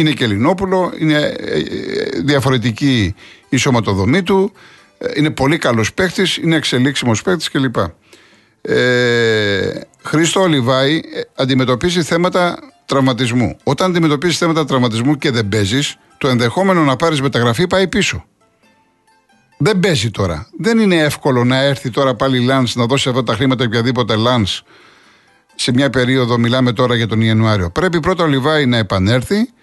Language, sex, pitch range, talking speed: Greek, male, 120-160 Hz, 135 wpm